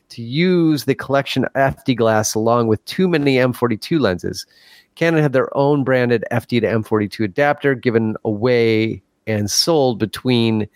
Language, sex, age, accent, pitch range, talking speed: English, male, 30-49, American, 110-140 Hz, 145 wpm